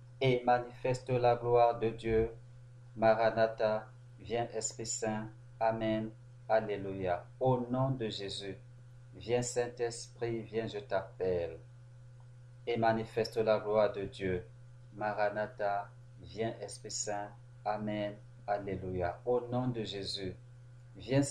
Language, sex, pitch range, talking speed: French, male, 110-120 Hz, 105 wpm